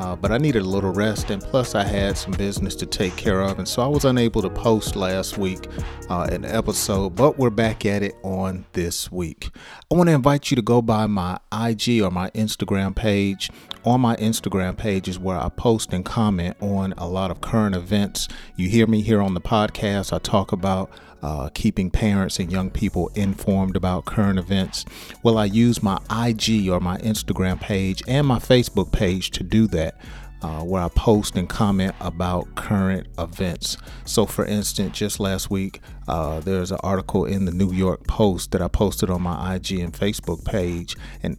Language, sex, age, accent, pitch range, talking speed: English, male, 40-59, American, 90-110 Hz, 195 wpm